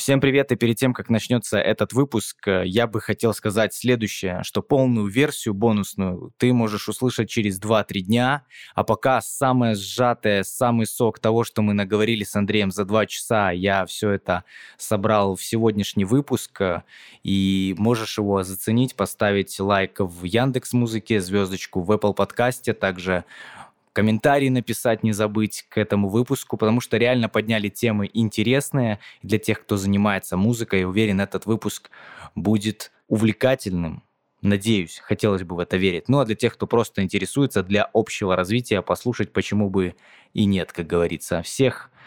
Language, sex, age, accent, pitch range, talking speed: Russian, male, 20-39, native, 100-115 Hz, 155 wpm